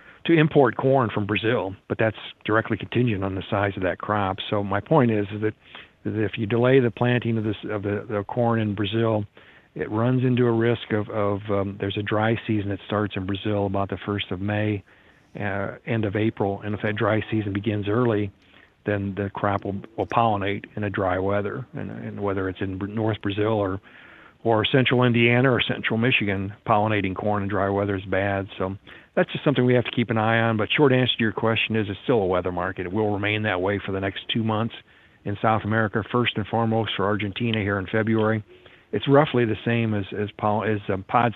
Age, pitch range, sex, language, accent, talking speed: 50-69, 100-115 Hz, male, English, American, 220 wpm